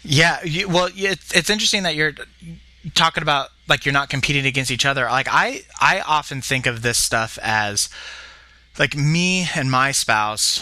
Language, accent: English, American